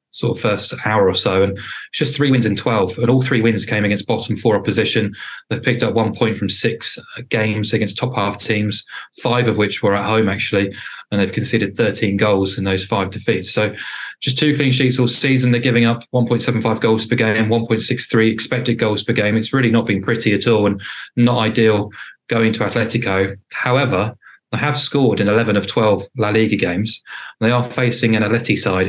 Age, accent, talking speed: 20-39, British, 205 wpm